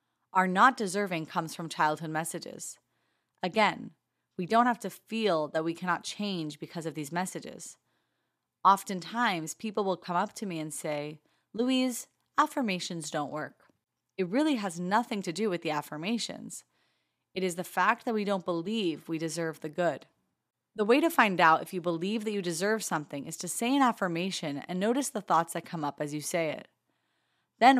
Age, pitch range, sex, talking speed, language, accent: 30-49, 165-210 Hz, female, 180 wpm, English, American